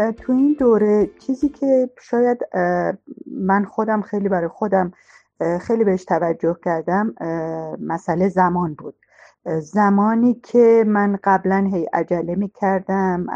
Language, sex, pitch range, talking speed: Persian, female, 170-215 Hz, 115 wpm